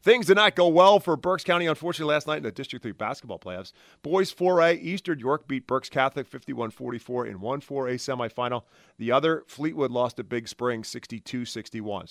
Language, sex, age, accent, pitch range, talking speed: English, male, 30-49, American, 115-160 Hz, 195 wpm